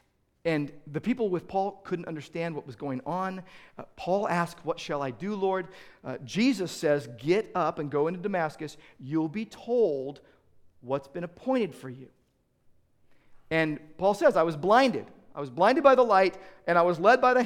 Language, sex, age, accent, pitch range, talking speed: English, male, 50-69, American, 160-215 Hz, 185 wpm